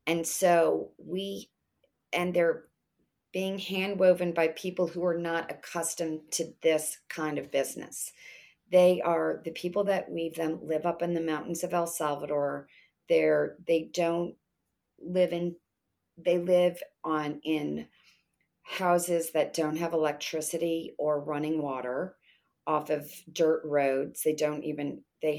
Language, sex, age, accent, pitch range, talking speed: English, female, 40-59, American, 150-175 Hz, 140 wpm